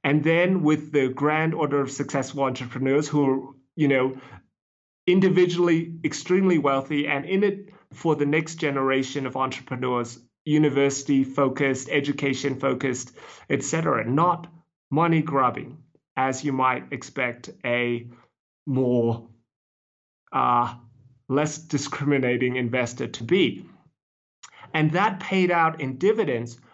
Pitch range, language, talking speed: 135-170 Hz, English, 115 wpm